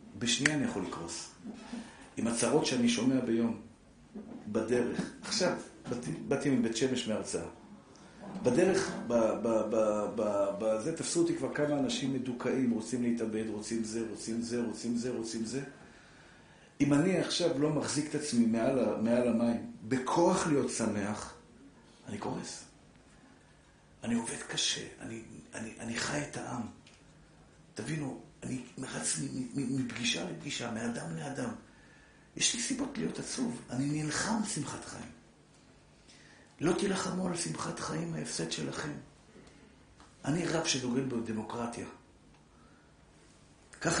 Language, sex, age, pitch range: Hebrew, male, 50-69, 115-150 Hz